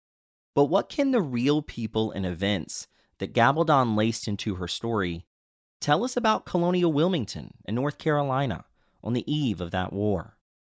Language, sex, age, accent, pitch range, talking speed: English, male, 30-49, American, 90-140 Hz, 155 wpm